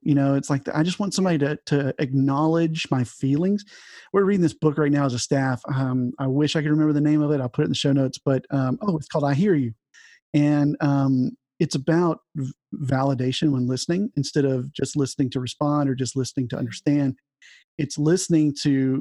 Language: English